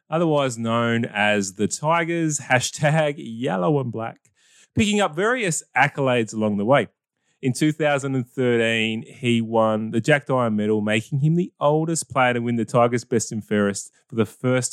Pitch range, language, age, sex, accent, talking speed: 105-145 Hz, English, 20-39, male, Australian, 160 wpm